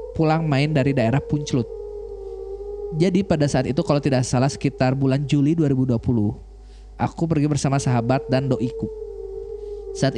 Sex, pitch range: male, 130-180 Hz